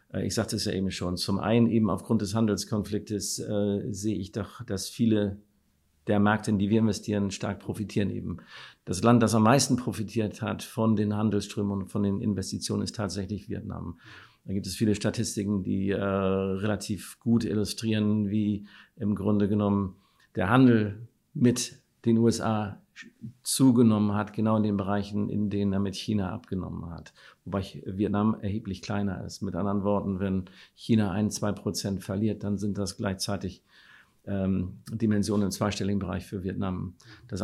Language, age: German, 50-69